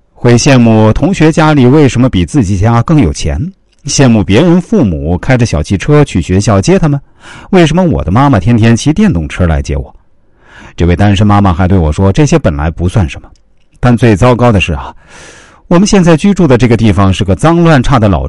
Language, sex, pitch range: Chinese, male, 90-135 Hz